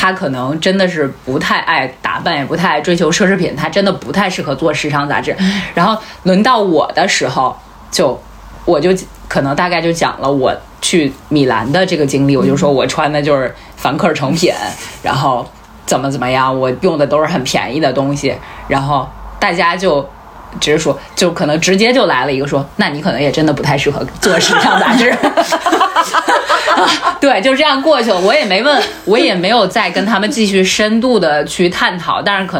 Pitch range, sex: 145-205 Hz, female